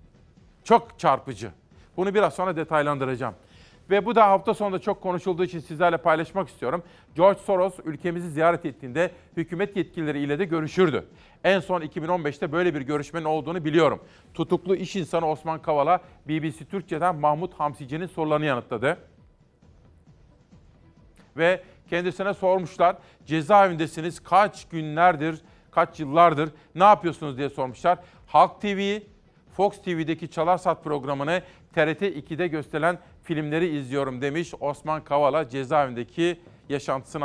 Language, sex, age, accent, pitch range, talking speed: Turkish, male, 40-59, native, 150-185 Hz, 120 wpm